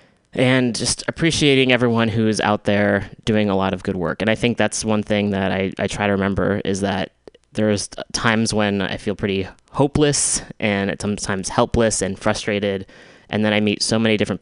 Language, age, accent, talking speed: English, 20-39, American, 195 wpm